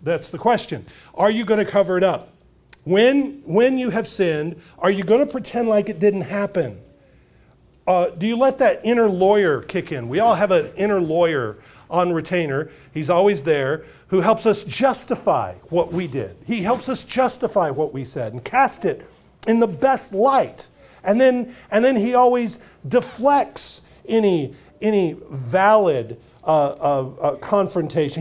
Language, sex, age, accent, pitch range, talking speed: English, male, 40-59, American, 175-240 Hz, 170 wpm